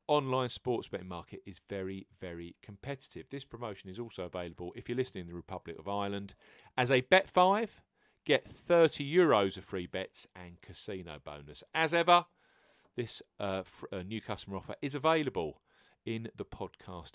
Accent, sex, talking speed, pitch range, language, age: British, male, 165 wpm, 95-140 Hz, English, 40-59